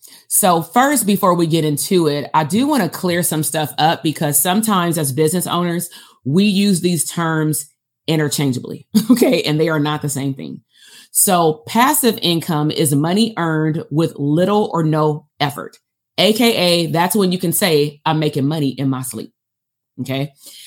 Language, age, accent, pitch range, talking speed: English, 30-49, American, 155-205 Hz, 165 wpm